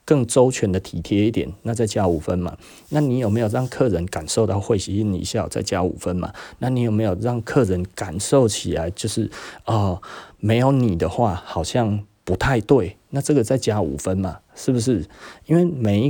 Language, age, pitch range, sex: Chinese, 30-49, 90-115 Hz, male